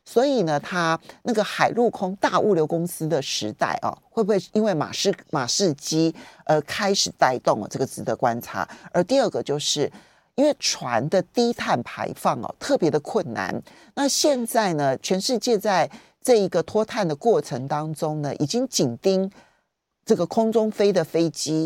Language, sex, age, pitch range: Chinese, male, 40-59, 150-230 Hz